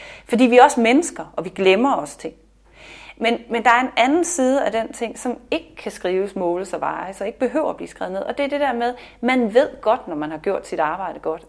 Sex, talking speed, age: female, 260 wpm, 30-49